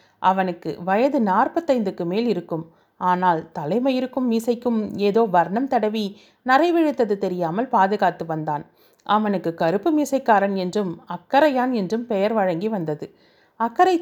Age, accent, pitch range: 30-49, native, 180-245 Hz